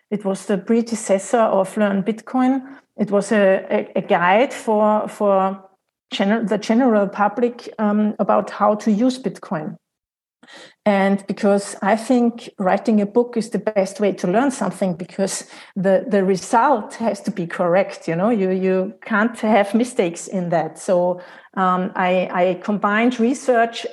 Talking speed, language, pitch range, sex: 155 wpm, English, 195-230 Hz, female